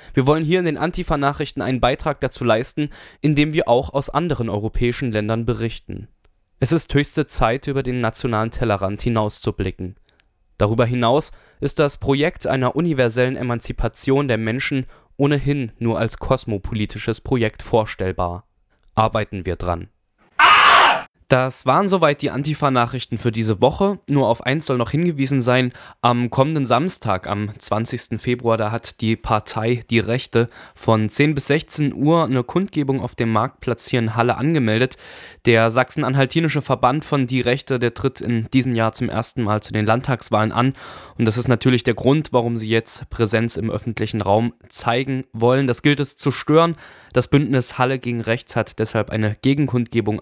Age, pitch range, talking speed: 20-39, 110-140 Hz, 160 wpm